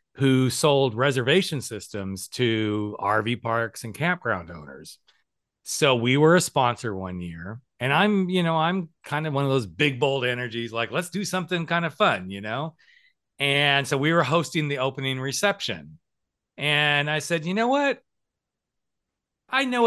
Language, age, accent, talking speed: English, 40-59, American, 165 wpm